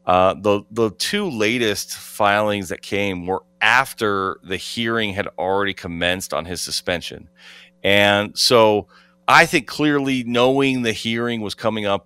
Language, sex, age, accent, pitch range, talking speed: English, male, 30-49, American, 90-115 Hz, 145 wpm